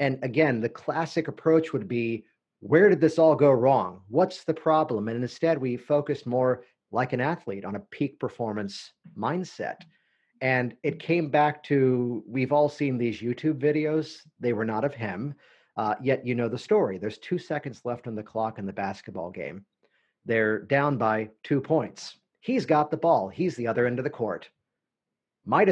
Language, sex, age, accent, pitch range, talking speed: English, male, 40-59, American, 110-150 Hz, 185 wpm